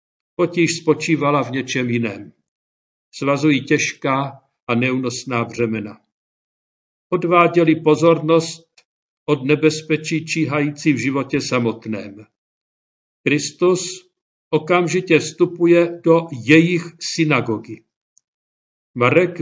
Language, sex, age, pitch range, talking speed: Czech, male, 50-69, 125-165 Hz, 75 wpm